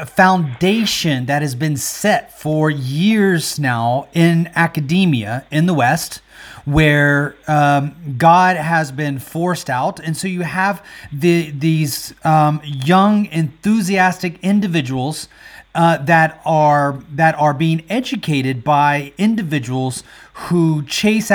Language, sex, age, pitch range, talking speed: English, male, 30-49, 145-190 Hz, 115 wpm